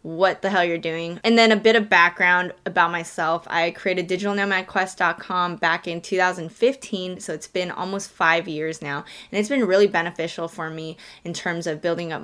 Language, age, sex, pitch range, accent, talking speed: English, 10-29, female, 170-200 Hz, American, 185 wpm